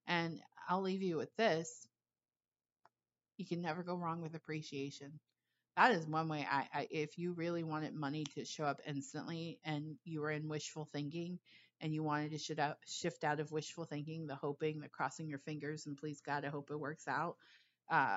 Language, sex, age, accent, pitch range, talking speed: English, female, 30-49, American, 145-170 Hz, 195 wpm